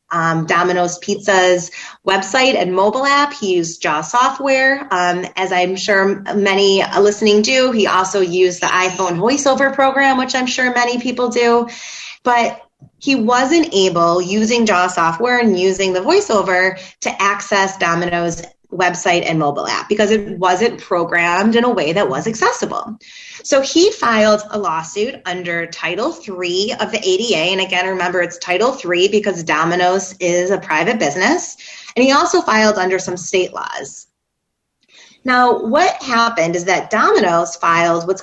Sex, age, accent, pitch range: female, 20-39, American, 180-245 Hz